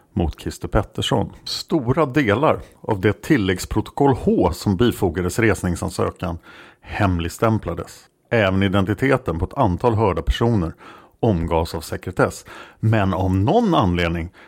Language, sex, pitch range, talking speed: Swedish, male, 90-115 Hz, 110 wpm